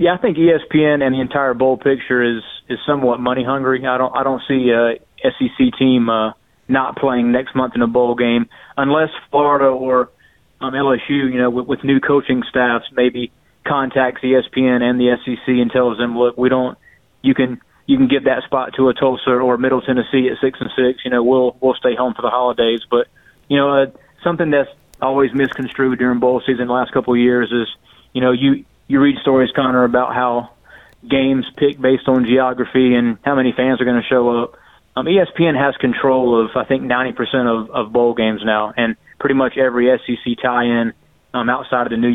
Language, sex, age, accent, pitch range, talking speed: English, male, 30-49, American, 125-135 Hz, 210 wpm